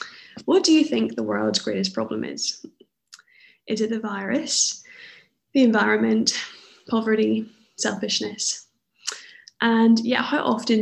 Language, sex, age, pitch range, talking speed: English, female, 10-29, 200-240 Hz, 120 wpm